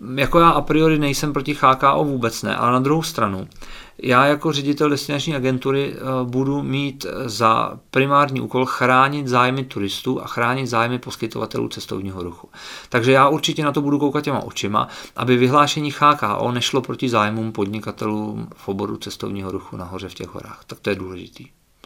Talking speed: 165 wpm